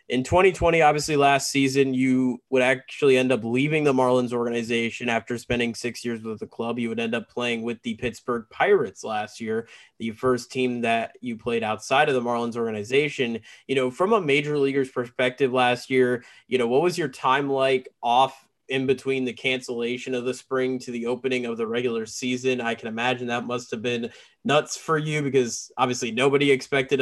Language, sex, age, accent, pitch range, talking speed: English, male, 20-39, American, 120-135 Hz, 195 wpm